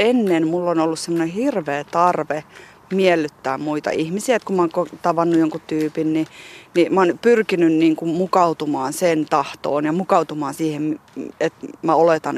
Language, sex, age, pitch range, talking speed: Finnish, female, 30-49, 155-190 Hz, 160 wpm